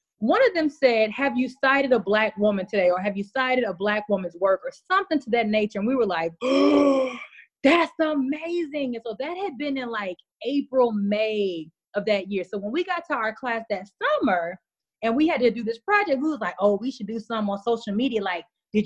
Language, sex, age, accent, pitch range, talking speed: English, female, 20-39, American, 220-320 Hz, 230 wpm